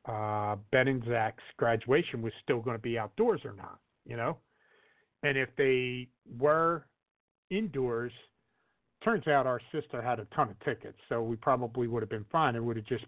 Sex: male